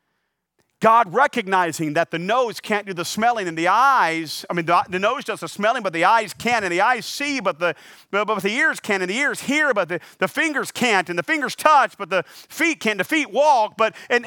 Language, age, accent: English, 40-59, American